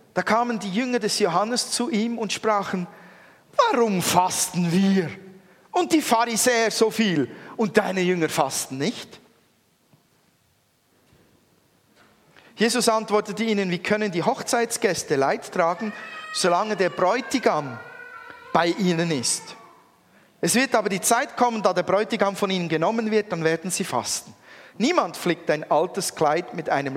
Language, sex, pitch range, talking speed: German, male, 170-230 Hz, 140 wpm